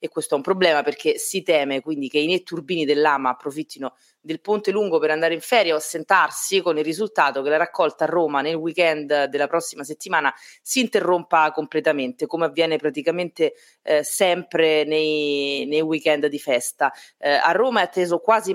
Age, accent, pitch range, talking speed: 30-49, native, 150-185 Hz, 180 wpm